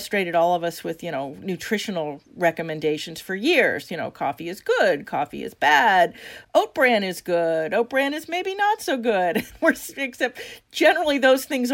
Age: 40-59